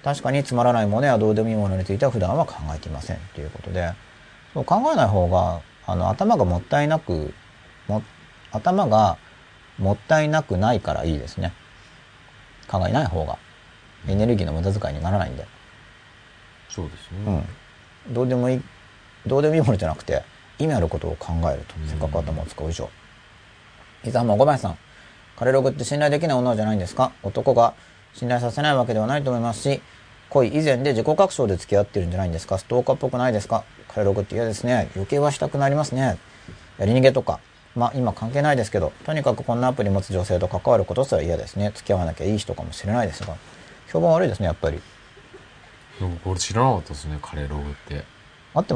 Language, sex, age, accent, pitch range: Japanese, male, 40-59, native, 90-125 Hz